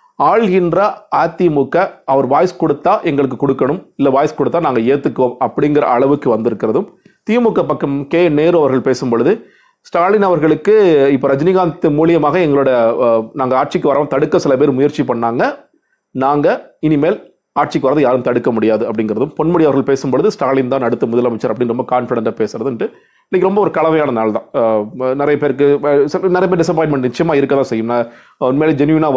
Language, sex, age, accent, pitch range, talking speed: Tamil, male, 40-59, native, 130-165 Hz, 140 wpm